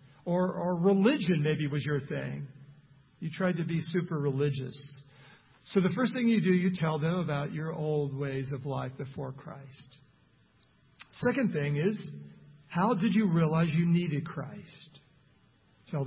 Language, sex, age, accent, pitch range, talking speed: English, male, 50-69, American, 145-200 Hz, 155 wpm